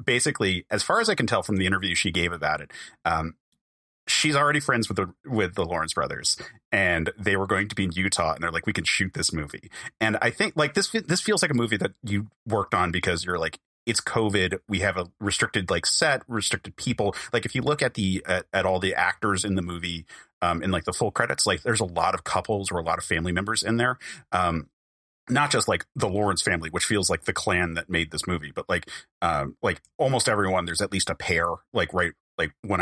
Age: 30-49